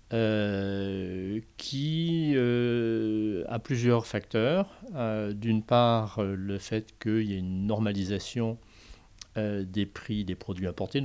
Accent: French